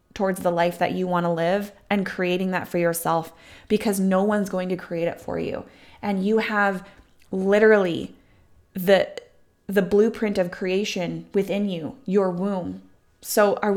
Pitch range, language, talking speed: 180-210 Hz, English, 160 wpm